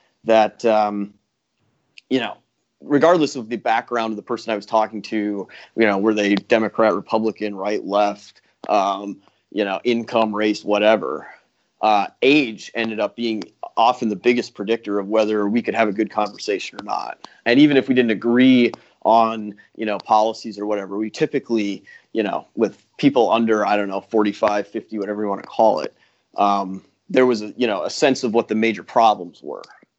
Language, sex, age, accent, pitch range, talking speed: English, male, 30-49, American, 105-120 Hz, 180 wpm